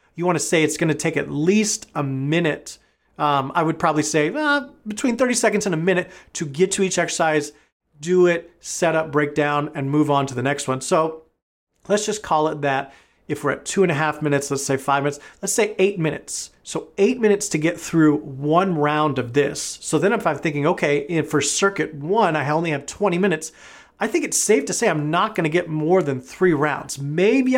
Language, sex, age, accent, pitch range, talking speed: English, male, 30-49, American, 150-190 Hz, 230 wpm